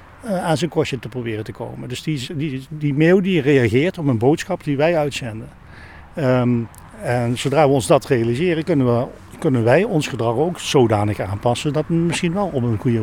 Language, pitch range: Dutch, 105-135 Hz